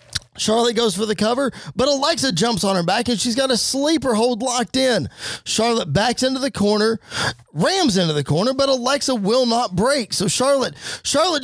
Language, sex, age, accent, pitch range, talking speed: English, male, 20-39, American, 215-285 Hz, 190 wpm